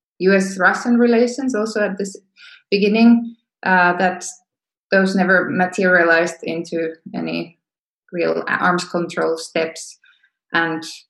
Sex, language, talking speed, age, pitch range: female, Slovak, 95 wpm, 20-39, 170-205 Hz